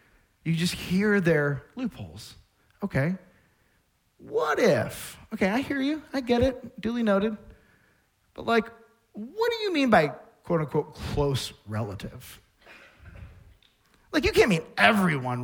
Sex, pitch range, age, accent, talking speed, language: male, 135-190 Hz, 40-59, American, 130 wpm, English